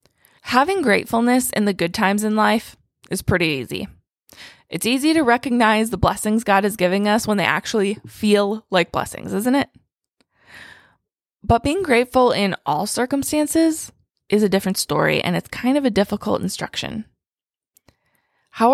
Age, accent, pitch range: 20-39, American, 180-235 Hz